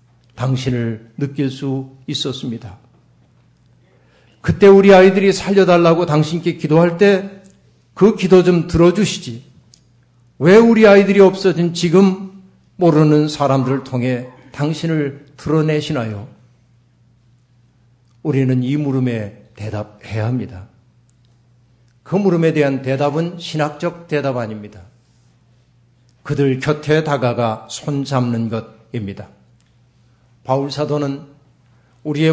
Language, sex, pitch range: Korean, male, 120-165 Hz